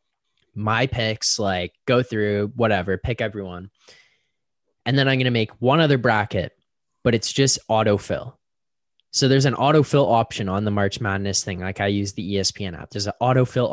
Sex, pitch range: male, 105-145 Hz